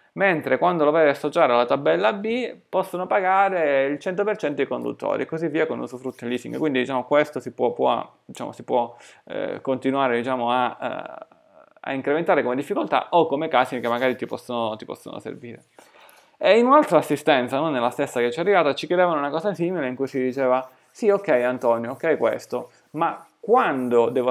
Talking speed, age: 195 wpm, 20-39